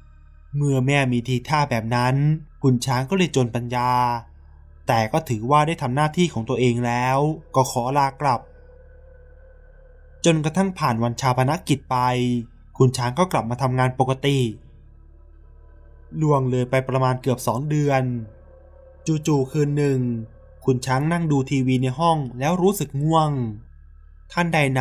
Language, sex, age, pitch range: Thai, male, 20-39, 115-150 Hz